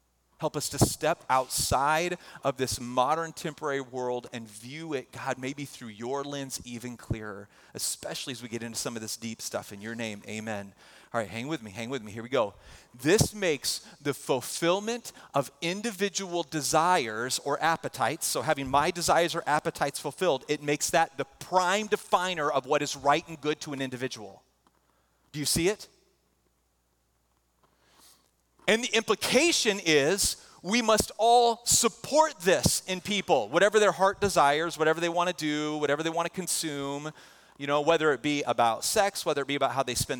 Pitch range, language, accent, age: 135-200 Hz, English, American, 30-49